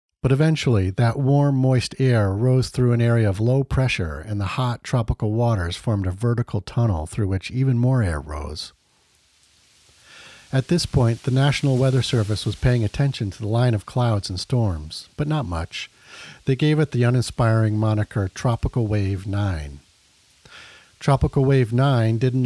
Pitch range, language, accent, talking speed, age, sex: 100-130 Hz, English, American, 165 wpm, 50-69, male